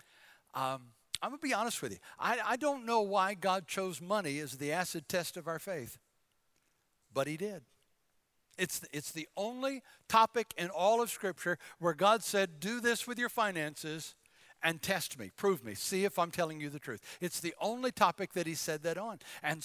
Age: 60-79